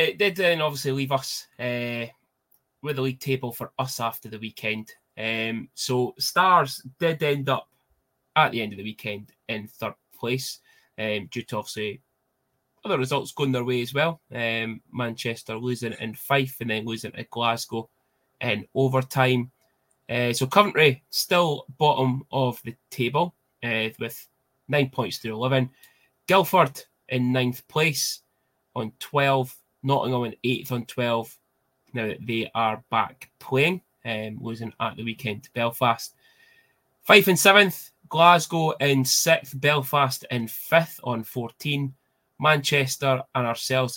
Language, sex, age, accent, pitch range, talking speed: English, male, 20-39, British, 115-135 Hz, 145 wpm